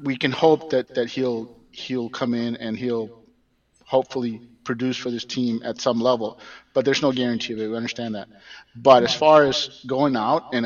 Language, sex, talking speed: English, male, 195 wpm